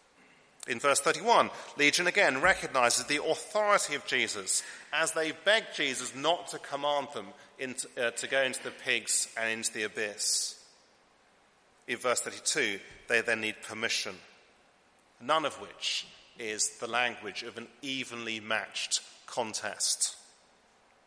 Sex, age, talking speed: male, 40-59, 130 wpm